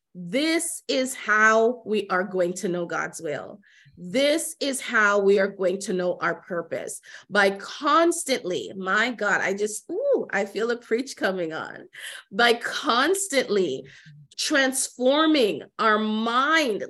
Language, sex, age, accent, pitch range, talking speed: English, female, 30-49, American, 220-280 Hz, 135 wpm